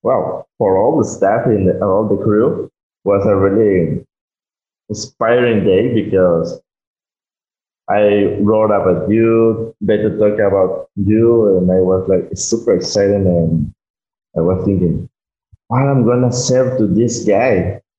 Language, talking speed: English, 145 wpm